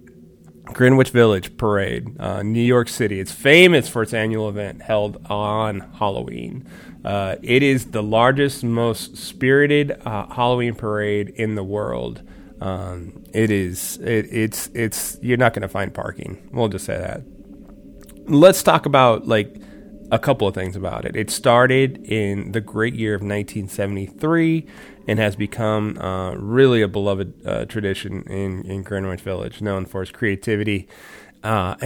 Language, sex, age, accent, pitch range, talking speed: English, male, 30-49, American, 95-115 Hz, 155 wpm